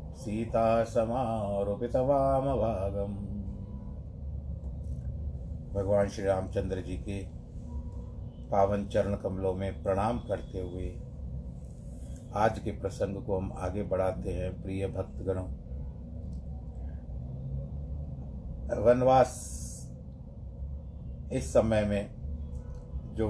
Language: Hindi